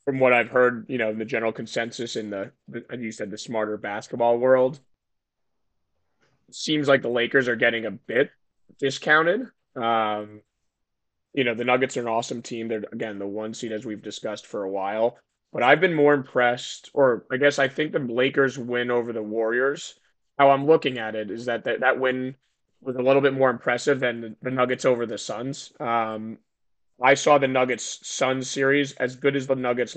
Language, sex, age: English, male, 20-39